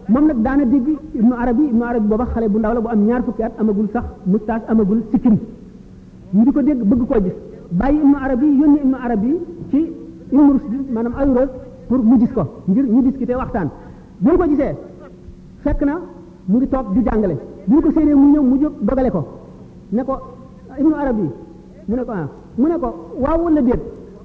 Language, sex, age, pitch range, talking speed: French, male, 50-69, 215-275 Hz, 90 wpm